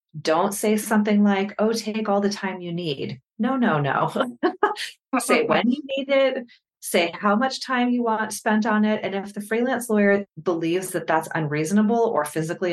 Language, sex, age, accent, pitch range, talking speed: English, female, 30-49, American, 175-220 Hz, 185 wpm